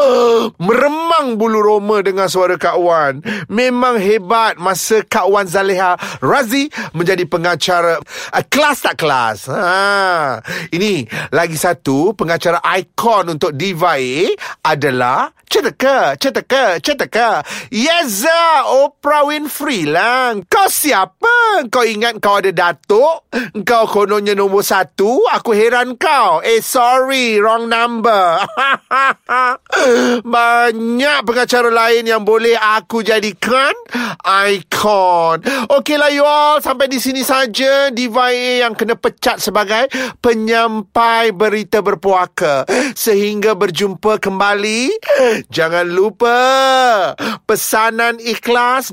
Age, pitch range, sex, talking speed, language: 30-49, 200-255 Hz, male, 105 wpm, Malay